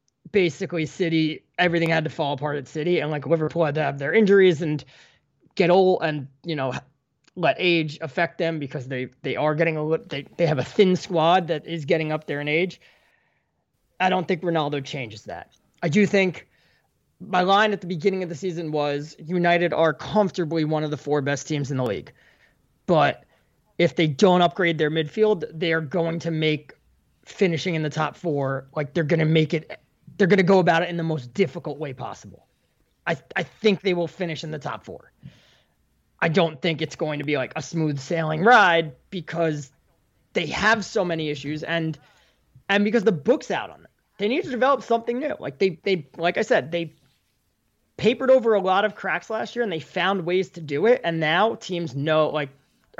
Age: 20-39